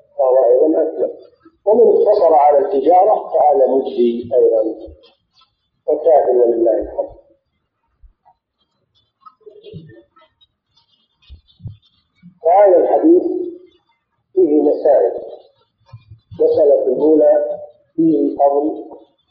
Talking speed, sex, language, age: 55 wpm, male, Arabic, 50-69